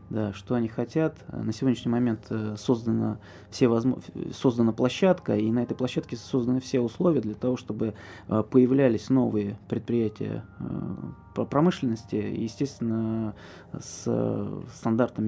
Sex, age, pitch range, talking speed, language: male, 20-39, 105-125 Hz, 115 wpm, Russian